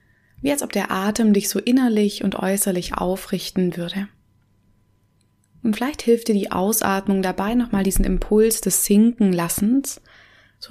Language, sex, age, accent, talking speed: German, female, 20-39, German, 140 wpm